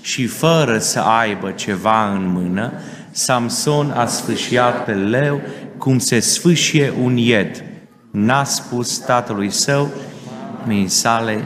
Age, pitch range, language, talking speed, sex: 30-49, 110-130 Hz, Romanian, 120 wpm, male